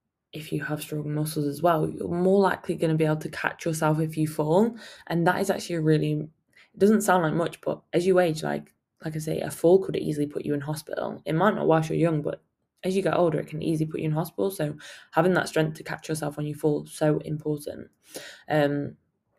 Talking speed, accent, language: 245 wpm, British, English